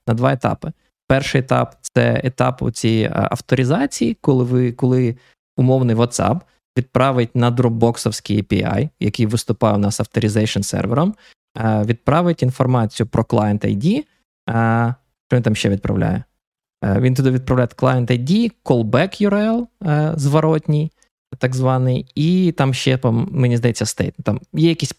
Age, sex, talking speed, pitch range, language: 20-39, male, 125 wpm, 115-145 Hz, Ukrainian